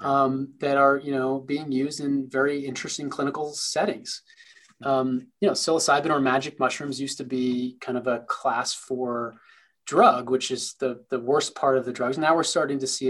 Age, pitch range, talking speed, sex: 20-39, 125-155 Hz, 195 wpm, male